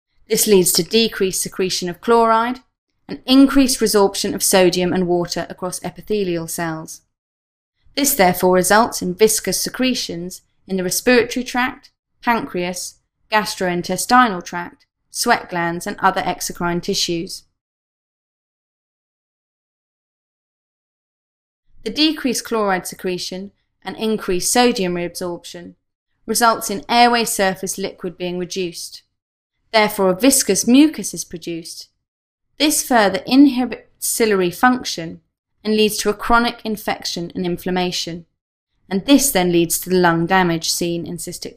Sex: female